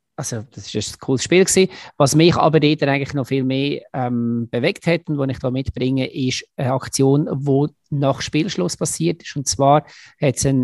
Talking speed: 195 wpm